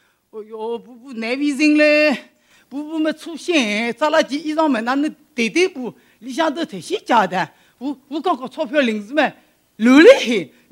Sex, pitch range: female, 190-290 Hz